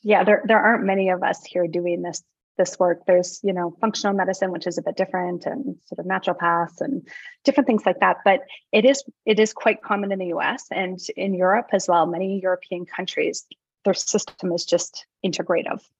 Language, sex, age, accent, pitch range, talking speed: English, female, 20-39, American, 175-210 Hz, 205 wpm